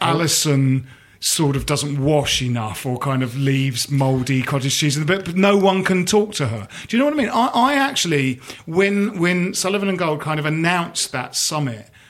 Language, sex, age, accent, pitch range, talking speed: English, male, 40-59, British, 125-170 Hz, 210 wpm